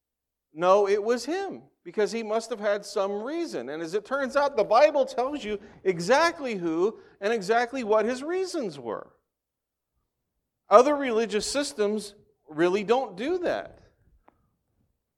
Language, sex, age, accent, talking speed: English, male, 40-59, American, 140 wpm